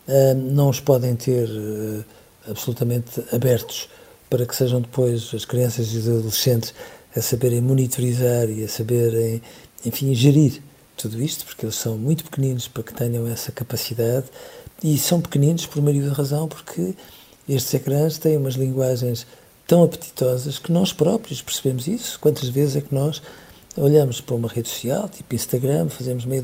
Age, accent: 50-69, Portuguese